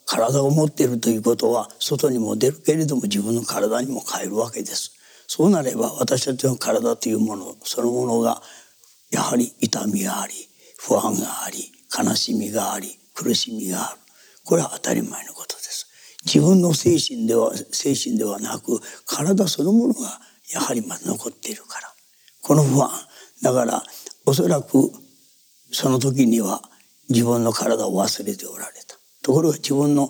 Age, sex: 60-79, male